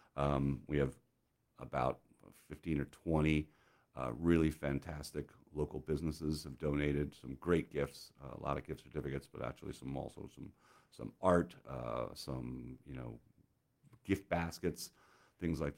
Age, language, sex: 50-69, English, male